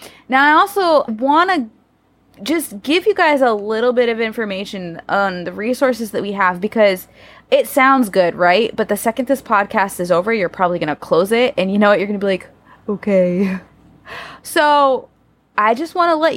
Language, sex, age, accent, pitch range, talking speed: English, female, 20-39, American, 195-275 Hz, 200 wpm